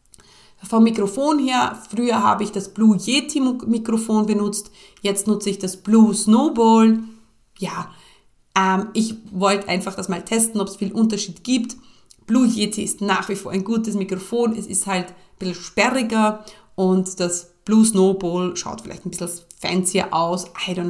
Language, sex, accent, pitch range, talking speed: German, female, German, 185-210 Hz, 165 wpm